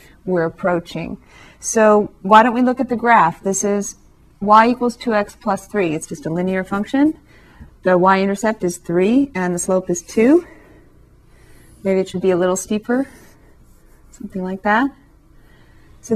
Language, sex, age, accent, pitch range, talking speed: English, female, 30-49, American, 180-220 Hz, 155 wpm